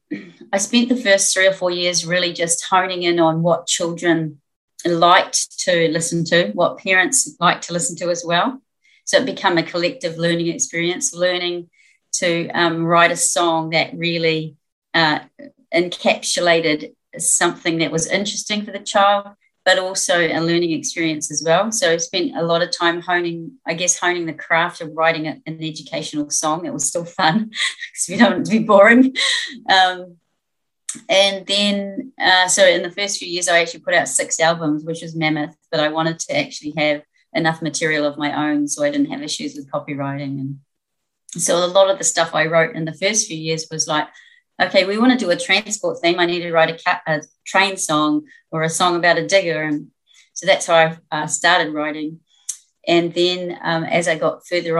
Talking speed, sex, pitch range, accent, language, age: 195 wpm, female, 160-190 Hz, Australian, English, 30-49